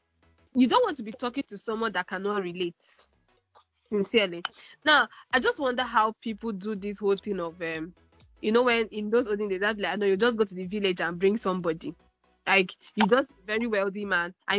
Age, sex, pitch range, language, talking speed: 10-29, female, 195-235 Hz, English, 210 wpm